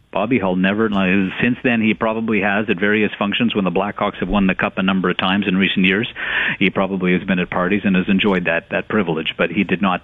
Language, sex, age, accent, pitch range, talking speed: English, male, 50-69, American, 95-110 Hz, 245 wpm